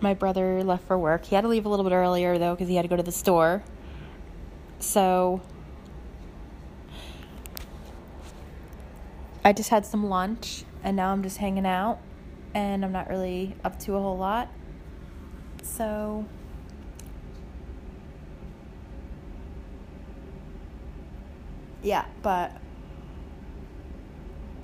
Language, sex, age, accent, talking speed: English, female, 20-39, American, 110 wpm